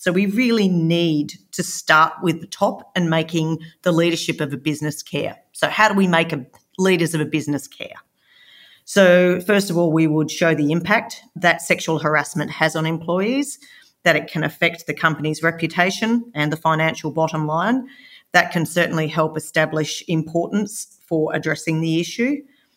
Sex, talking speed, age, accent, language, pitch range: female, 170 wpm, 40-59, Australian, English, 155-180 Hz